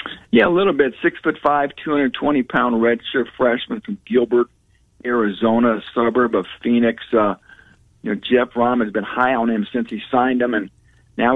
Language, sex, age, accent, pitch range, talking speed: English, male, 50-69, American, 110-130 Hz, 165 wpm